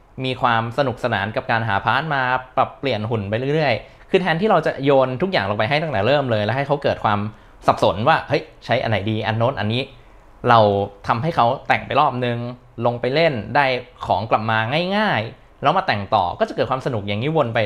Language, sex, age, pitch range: Thai, male, 20-39, 105-135 Hz